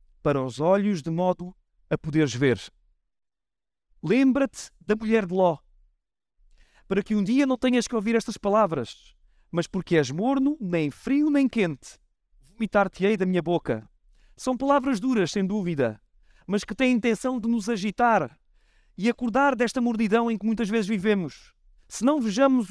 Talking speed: 155 wpm